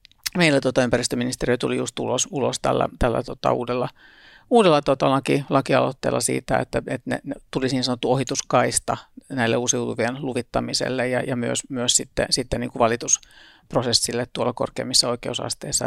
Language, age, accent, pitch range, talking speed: Finnish, 50-69, native, 120-140 Hz, 140 wpm